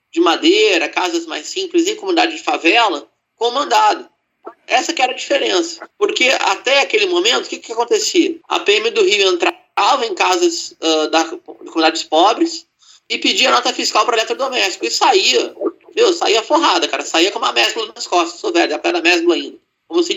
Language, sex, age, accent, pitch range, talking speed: Portuguese, male, 30-49, Brazilian, 255-385 Hz, 195 wpm